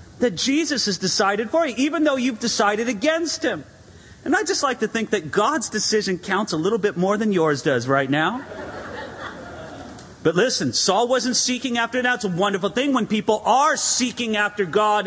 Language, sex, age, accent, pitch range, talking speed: English, male, 40-59, American, 170-240 Hz, 190 wpm